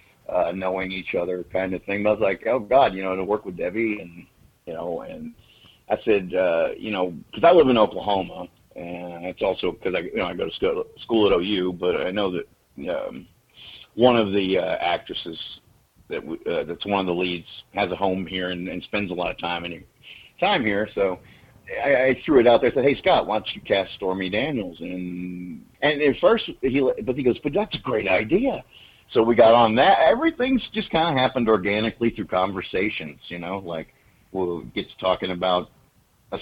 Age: 50-69